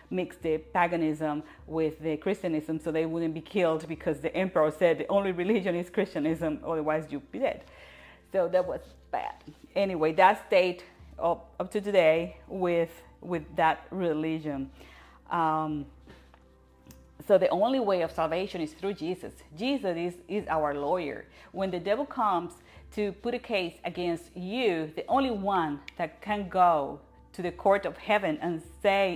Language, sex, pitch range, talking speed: English, female, 155-195 Hz, 160 wpm